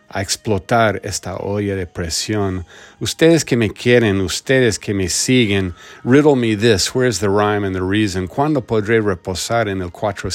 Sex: male